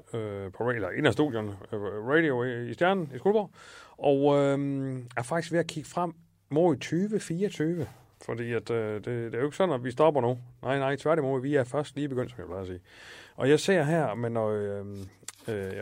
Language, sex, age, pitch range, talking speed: Danish, male, 30-49, 105-145 Hz, 200 wpm